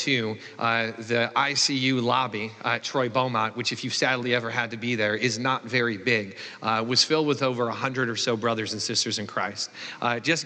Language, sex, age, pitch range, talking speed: English, male, 40-59, 115-140 Hz, 200 wpm